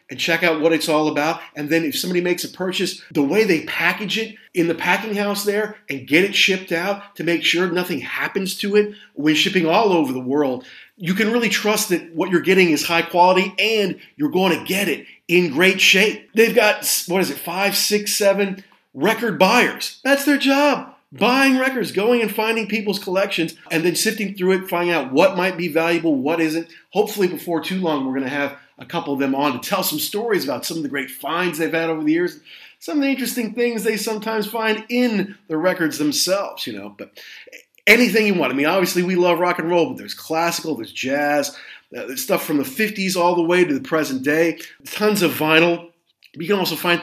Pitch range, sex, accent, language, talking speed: 165-210 Hz, male, American, English, 220 wpm